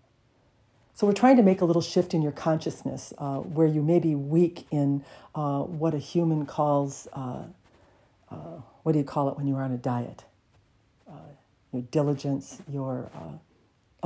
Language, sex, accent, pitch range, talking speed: English, female, American, 130-175 Hz, 170 wpm